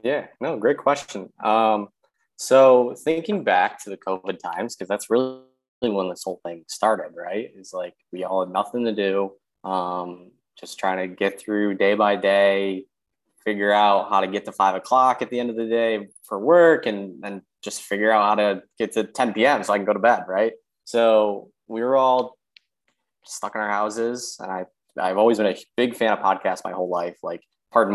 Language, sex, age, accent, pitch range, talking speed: English, male, 20-39, American, 95-120 Hz, 205 wpm